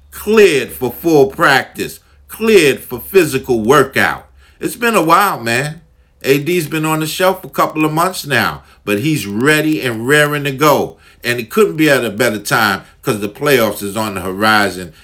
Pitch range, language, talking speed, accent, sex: 115-150 Hz, English, 185 wpm, American, male